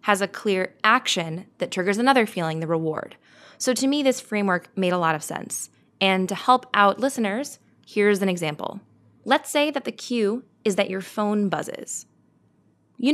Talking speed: 180 wpm